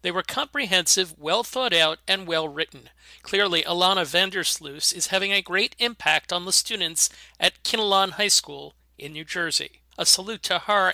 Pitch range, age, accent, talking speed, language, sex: 160-220 Hz, 40-59, American, 155 wpm, English, male